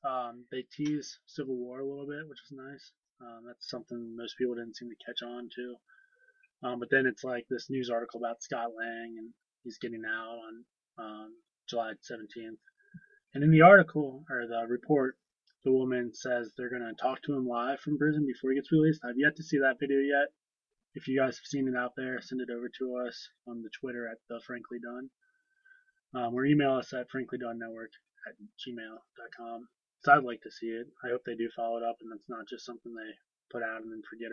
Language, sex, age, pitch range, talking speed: English, male, 20-39, 115-135 Hz, 215 wpm